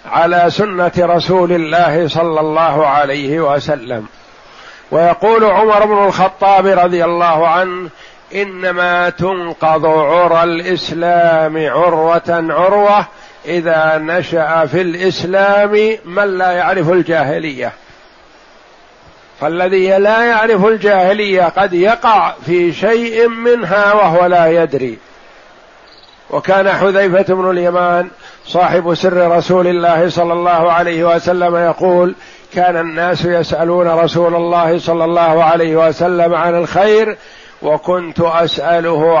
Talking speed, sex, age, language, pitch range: 105 wpm, male, 60-79, Arabic, 165-185 Hz